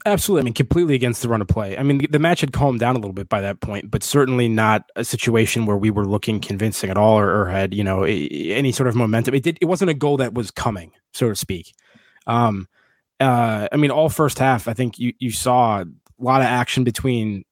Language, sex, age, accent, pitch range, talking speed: English, male, 20-39, American, 105-130 Hz, 255 wpm